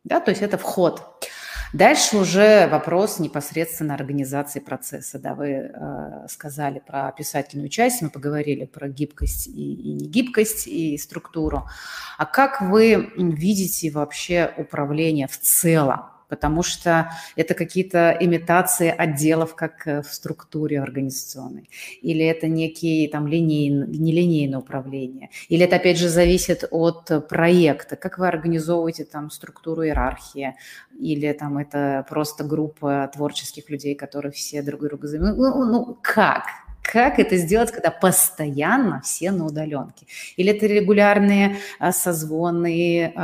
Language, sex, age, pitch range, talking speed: Russian, female, 30-49, 145-175 Hz, 125 wpm